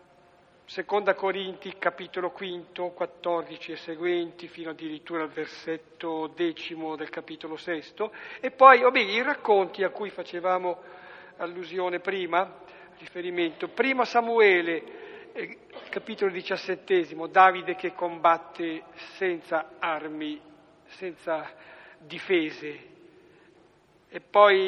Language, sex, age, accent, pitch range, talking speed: Italian, male, 50-69, native, 170-205 Hz, 100 wpm